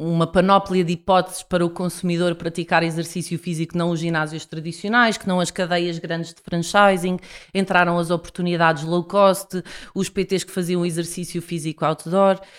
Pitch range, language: 170-205 Hz, Portuguese